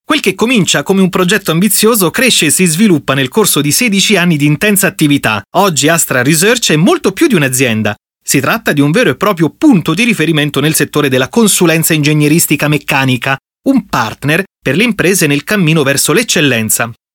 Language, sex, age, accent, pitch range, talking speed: Italian, male, 30-49, native, 135-195 Hz, 180 wpm